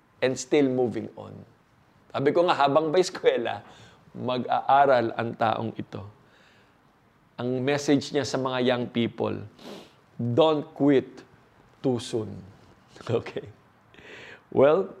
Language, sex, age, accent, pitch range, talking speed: Filipino, male, 20-39, native, 115-140 Hz, 110 wpm